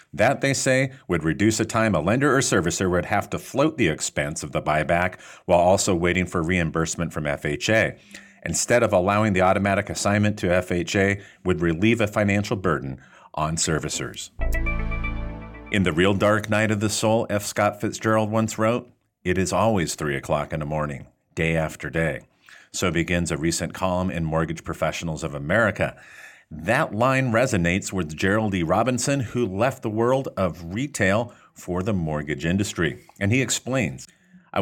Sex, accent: male, American